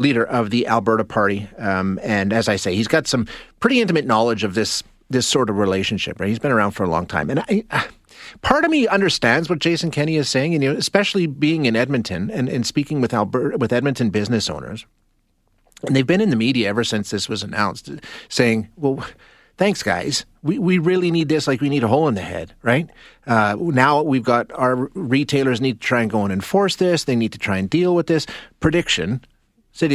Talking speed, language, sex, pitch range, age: 220 wpm, English, male, 110-155 Hz, 30-49